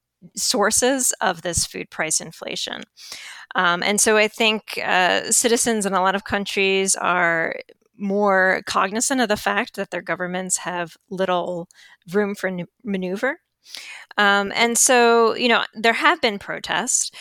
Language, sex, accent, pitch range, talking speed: English, female, American, 175-215 Hz, 145 wpm